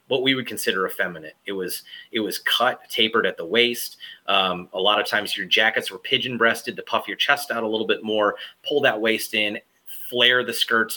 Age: 30-49